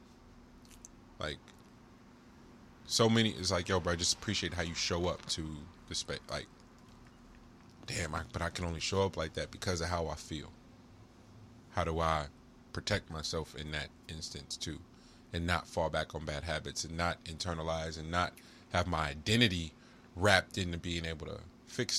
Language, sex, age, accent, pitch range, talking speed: English, male, 20-39, American, 85-115 Hz, 165 wpm